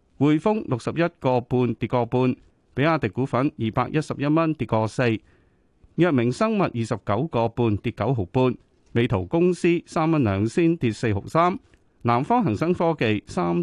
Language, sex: Chinese, male